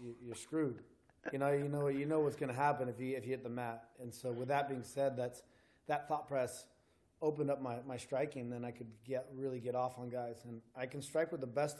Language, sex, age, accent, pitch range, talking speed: English, male, 20-39, American, 115-130 Hz, 255 wpm